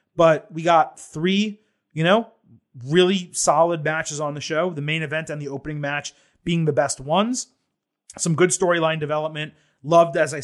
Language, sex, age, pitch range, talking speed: English, male, 30-49, 145-175 Hz, 170 wpm